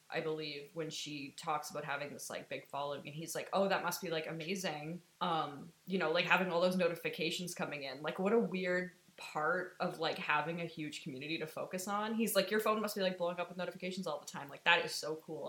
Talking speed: 245 wpm